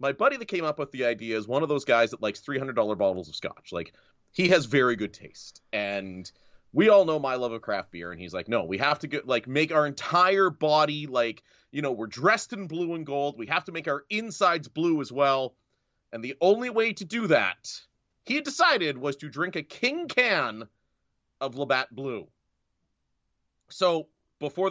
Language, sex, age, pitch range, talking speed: English, male, 30-49, 120-180 Hz, 205 wpm